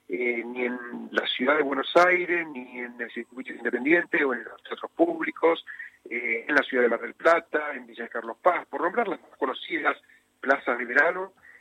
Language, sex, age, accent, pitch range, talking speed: Spanish, male, 50-69, Argentinian, 120-195 Hz, 200 wpm